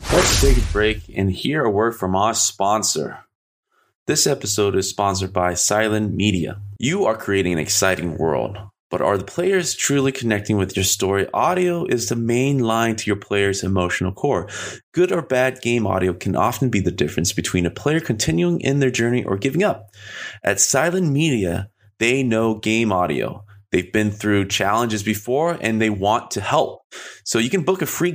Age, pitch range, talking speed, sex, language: 20-39, 95-120 Hz, 185 wpm, male, English